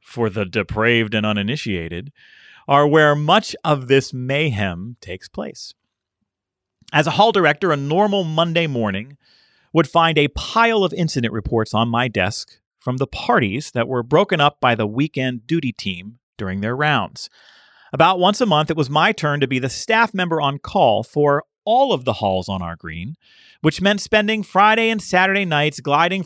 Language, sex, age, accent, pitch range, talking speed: English, male, 40-59, American, 115-175 Hz, 175 wpm